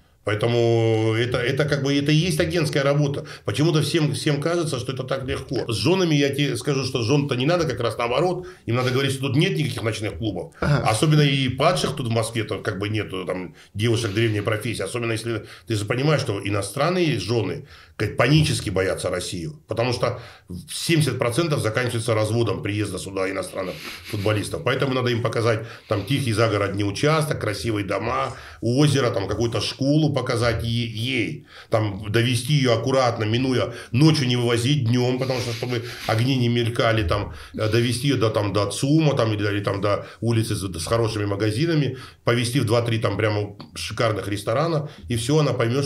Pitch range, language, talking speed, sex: 105-135 Hz, Russian, 165 wpm, male